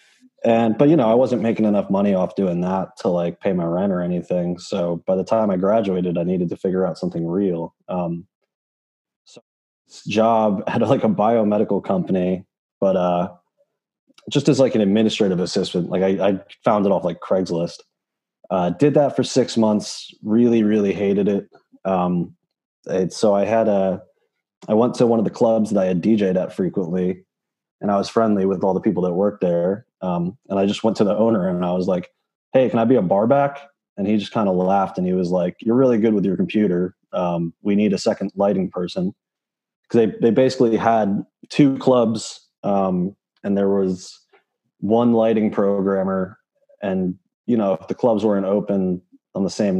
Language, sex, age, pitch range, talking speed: English, male, 30-49, 90-110 Hz, 195 wpm